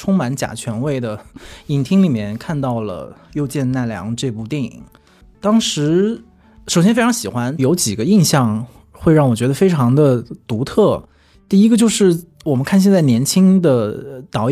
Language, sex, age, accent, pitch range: Chinese, male, 20-39, native, 115-170 Hz